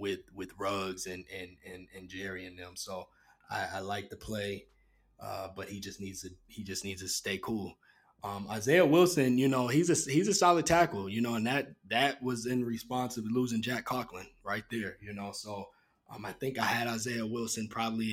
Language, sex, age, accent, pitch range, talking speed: English, male, 20-39, American, 105-125 Hz, 210 wpm